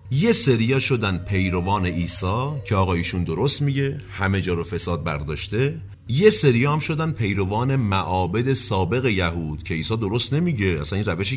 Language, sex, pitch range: Persian, male, 90-130 Hz